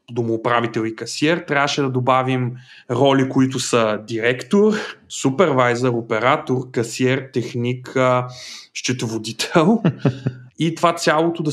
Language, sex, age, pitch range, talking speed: Bulgarian, male, 30-49, 125-165 Hz, 100 wpm